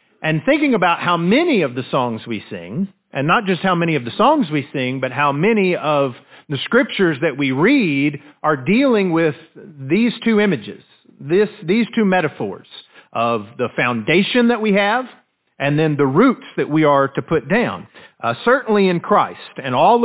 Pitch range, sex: 150-210 Hz, male